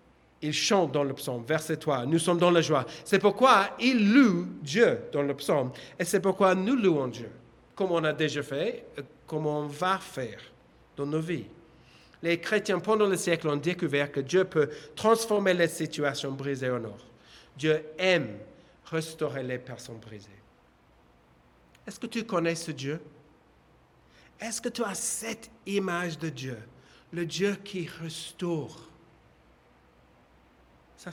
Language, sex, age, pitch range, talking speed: French, male, 50-69, 125-180 Hz, 155 wpm